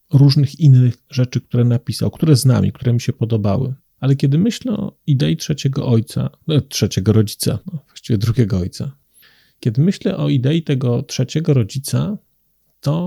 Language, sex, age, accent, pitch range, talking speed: Polish, male, 40-59, native, 125-145 Hz, 155 wpm